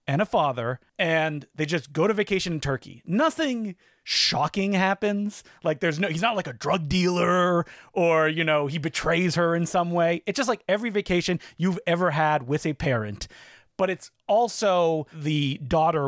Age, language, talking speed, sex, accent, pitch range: 30-49, English, 180 wpm, male, American, 145-185 Hz